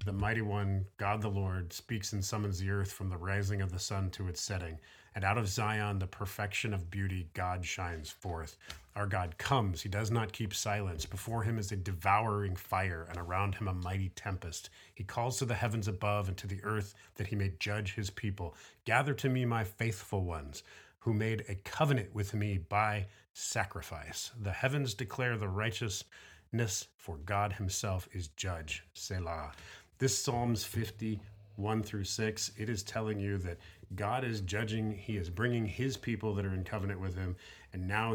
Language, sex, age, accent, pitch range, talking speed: English, male, 30-49, American, 95-110 Hz, 185 wpm